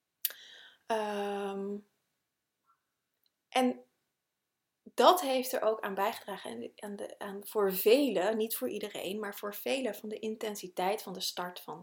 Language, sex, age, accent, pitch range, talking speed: Dutch, female, 30-49, Dutch, 205-260 Hz, 140 wpm